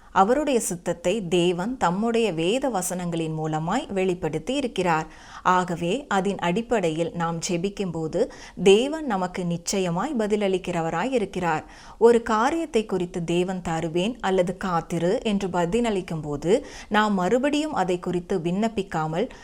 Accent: native